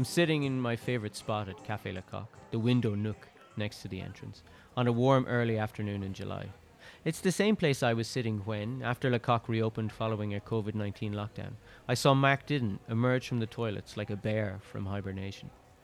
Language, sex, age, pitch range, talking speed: English, male, 30-49, 105-130 Hz, 195 wpm